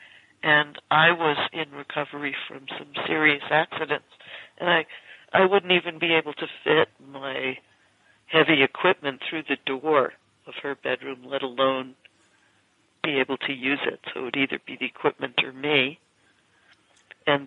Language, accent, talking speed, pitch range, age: English, American, 150 wpm, 135-155 Hz, 60-79